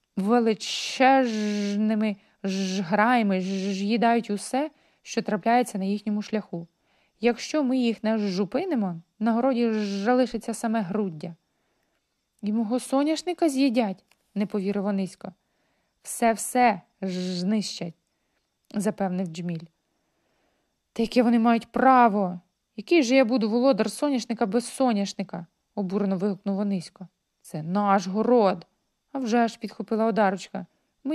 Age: 20-39